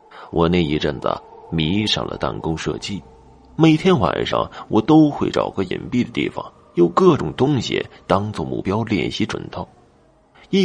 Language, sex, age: Chinese, male, 30-49